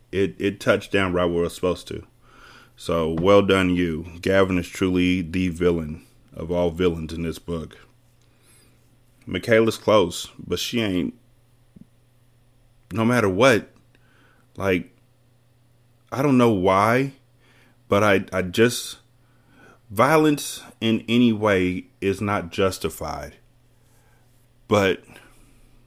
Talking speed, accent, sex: 115 wpm, American, male